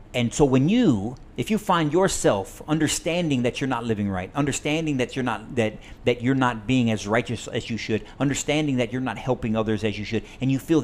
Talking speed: 220 wpm